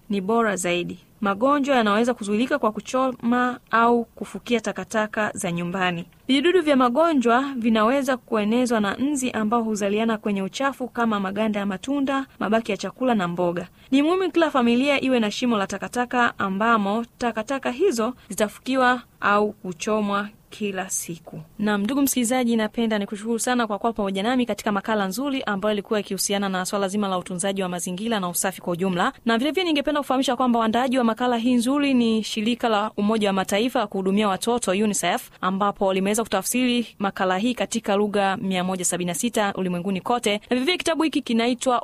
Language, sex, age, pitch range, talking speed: Swahili, female, 20-39, 195-245 Hz, 160 wpm